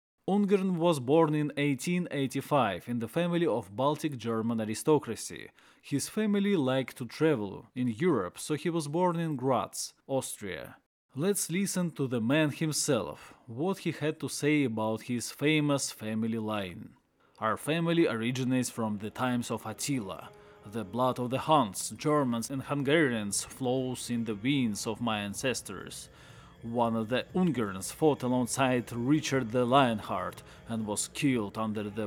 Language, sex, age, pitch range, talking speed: English, male, 20-39, 110-145 Hz, 145 wpm